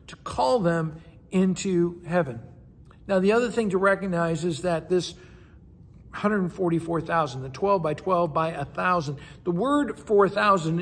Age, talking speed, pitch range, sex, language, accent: 60-79, 135 wpm, 175-230 Hz, male, English, American